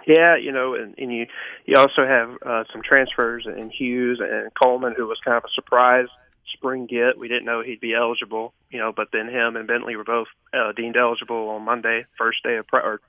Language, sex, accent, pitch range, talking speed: English, male, American, 115-125 Hz, 225 wpm